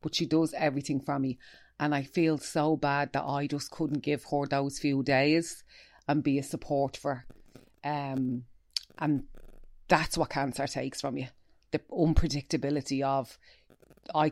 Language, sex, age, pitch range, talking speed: English, female, 30-49, 135-150 Hz, 155 wpm